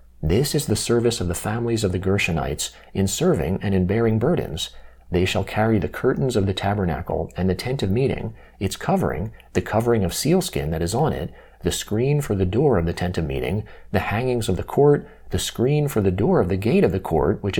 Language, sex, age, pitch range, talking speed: English, male, 40-59, 90-115 Hz, 225 wpm